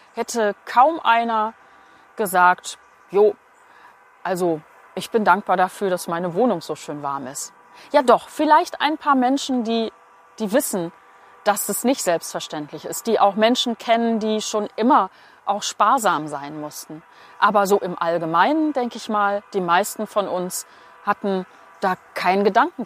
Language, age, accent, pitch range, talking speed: German, 40-59, German, 185-240 Hz, 150 wpm